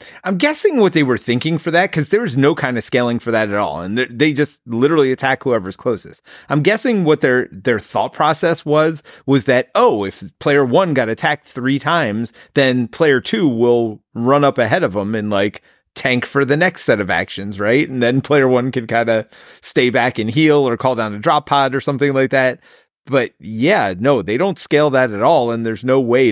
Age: 30-49